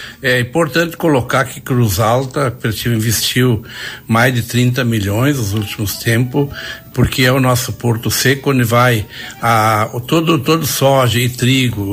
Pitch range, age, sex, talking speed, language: 115-135 Hz, 60-79, male, 140 wpm, Portuguese